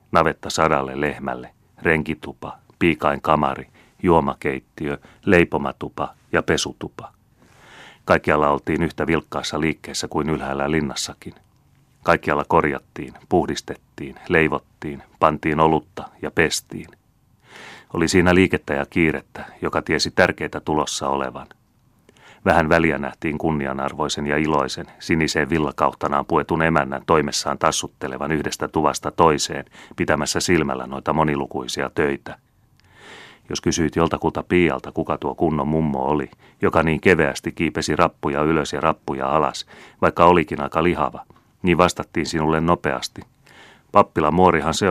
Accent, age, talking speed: native, 30-49, 115 wpm